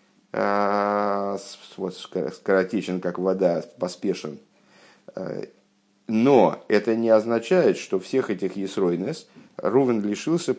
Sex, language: male, Russian